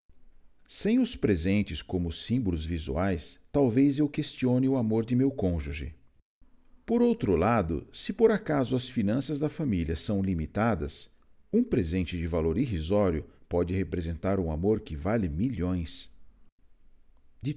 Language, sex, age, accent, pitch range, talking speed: Portuguese, male, 50-69, Brazilian, 85-135 Hz, 135 wpm